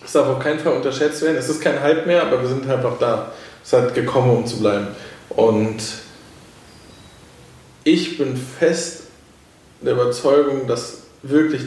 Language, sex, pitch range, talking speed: German, male, 115-145 Hz, 170 wpm